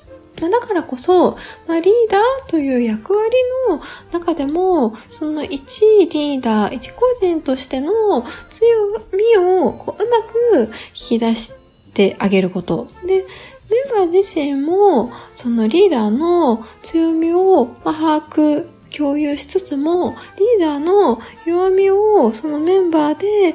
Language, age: Japanese, 20-39